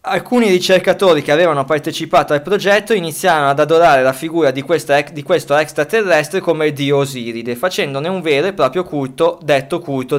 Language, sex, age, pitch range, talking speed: Italian, male, 20-39, 125-180 Hz, 165 wpm